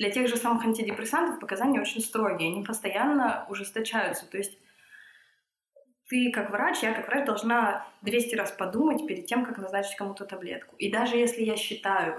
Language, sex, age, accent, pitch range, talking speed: Russian, female, 20-39, native, 195-245 Hz, 165 wpm